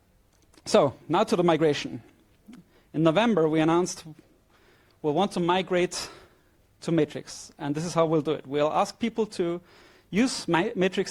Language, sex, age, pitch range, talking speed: English, male, 30-49, 150-190 Hz, 150 wpm